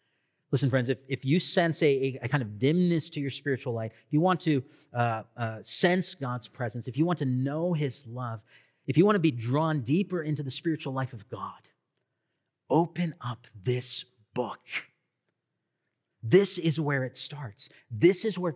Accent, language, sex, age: American, English, male, 40-59